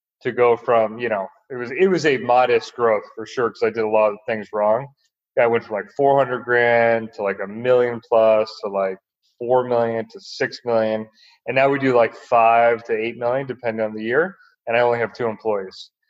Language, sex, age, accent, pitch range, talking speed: English, male, 30-49, American, 110-130 Hz, 220 wpm